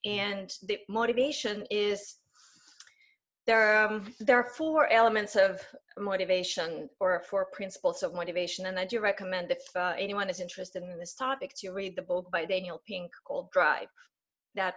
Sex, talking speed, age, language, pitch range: female, 165 wpm, 20-39, English, 185-235 Hz